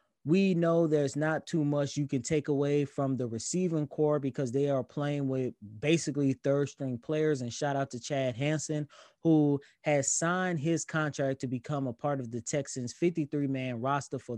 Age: 20-39